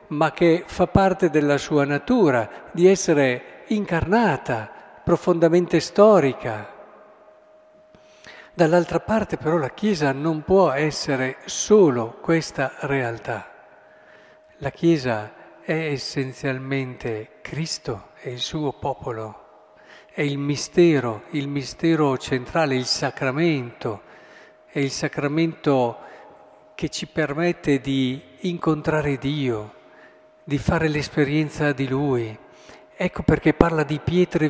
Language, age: Italian, 50-69